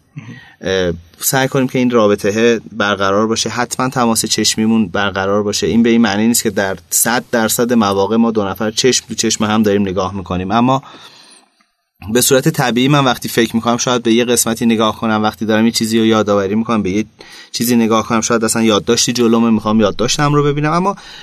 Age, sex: 30-49, male